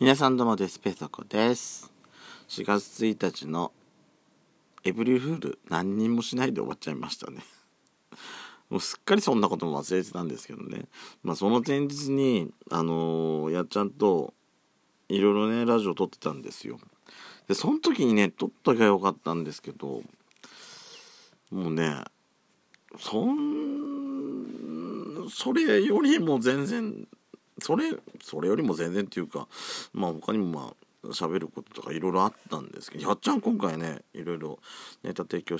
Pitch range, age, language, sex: 80-120 Hz, 50-69, Japanese, male